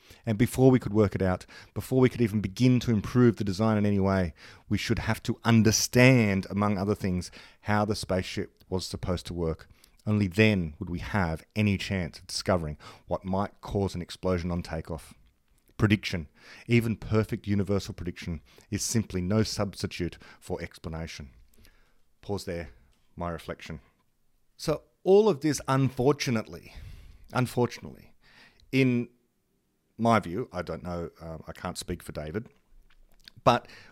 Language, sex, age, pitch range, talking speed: English, male, 30-49, 95-130 Hz, 150 wpm